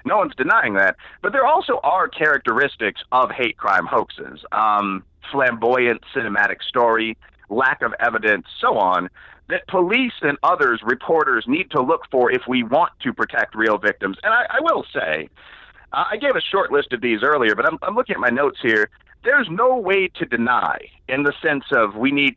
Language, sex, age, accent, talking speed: English, male, 40-59, American, 190 wpm